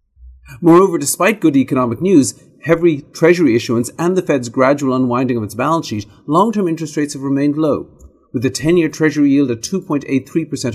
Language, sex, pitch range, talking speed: English, male, 120-165 Hz, 160 wpm